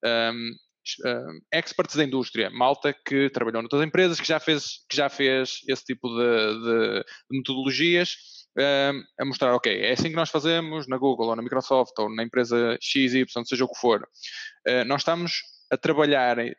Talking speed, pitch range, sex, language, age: 175 wpm, 130-155 Hz, male, Portuguese, 20-39